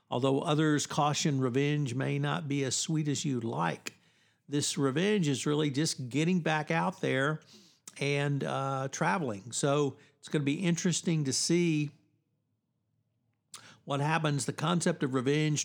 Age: 60-79